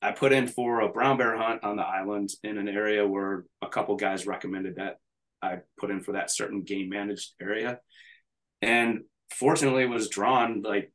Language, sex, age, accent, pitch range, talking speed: English, male, 20-39, American, 105-125 Hz, 185 wpm